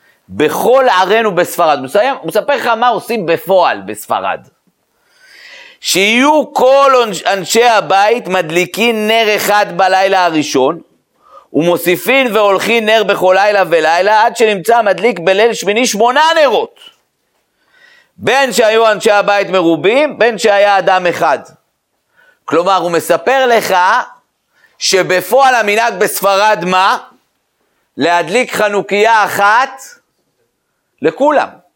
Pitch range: 185-270 Hz